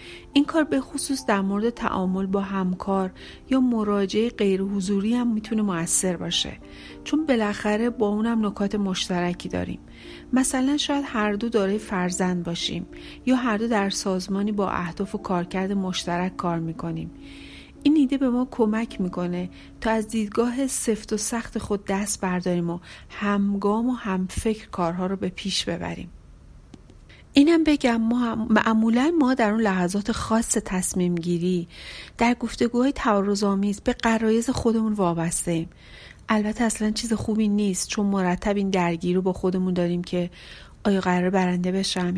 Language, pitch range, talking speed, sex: Persian, 180-225 Hz, 145 wpm, female